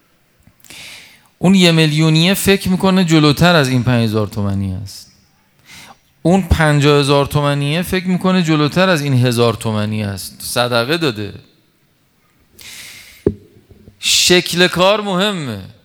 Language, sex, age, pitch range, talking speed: Persian, male, 40-59, 125-165 Hz, 100 wpm